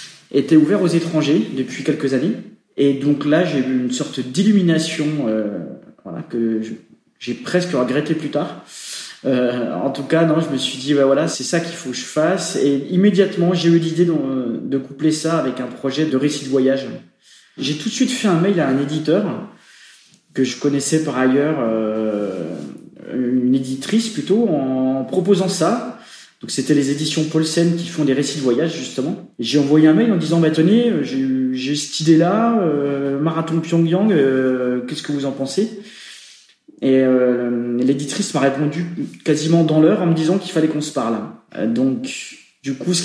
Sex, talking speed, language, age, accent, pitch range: male, 190 wpm, French, 20-39, French, 135-170 Hz